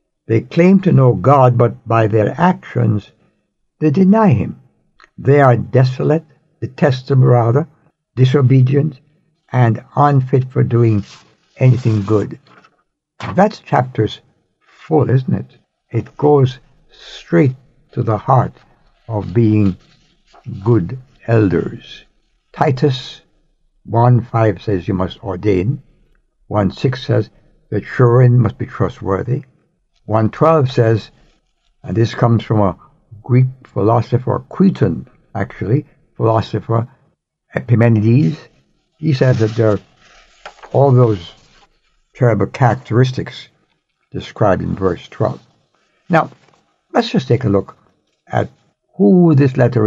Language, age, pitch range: English, 60-79, 115-145 Hz